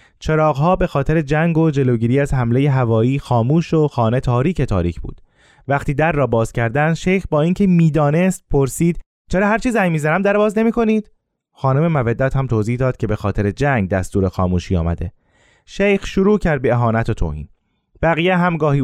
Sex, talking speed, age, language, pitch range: male, 175 wpm, 20-39, Persian, 115-170 Hz